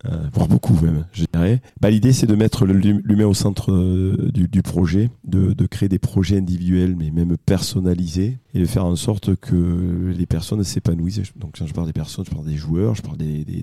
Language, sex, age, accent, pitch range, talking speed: French, male, 30-49, French, 85-105 Hz, 215 wpm